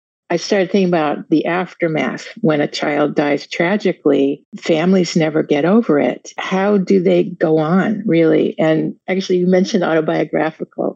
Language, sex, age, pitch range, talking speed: English, female, 50-69, 155-185 Hz, 150 wpm